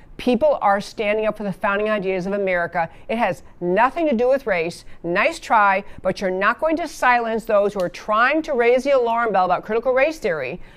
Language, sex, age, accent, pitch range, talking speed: English, female, 50-69, American, 190-265 Hz, 210 wpm